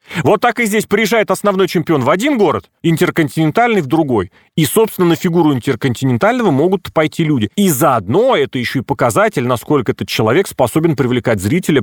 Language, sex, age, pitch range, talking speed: Russian, male, 30-49, 130-190 Hz, 165 wpm